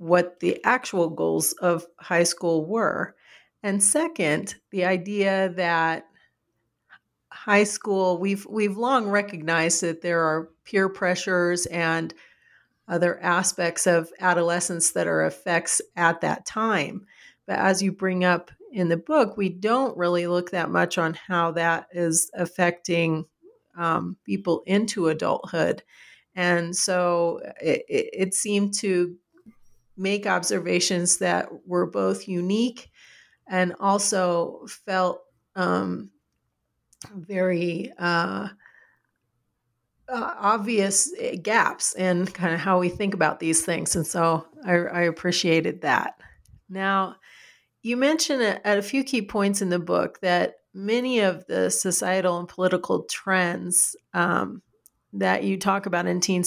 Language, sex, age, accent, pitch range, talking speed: English, female, 40-59, American, 170-200 Hz, 130 wpm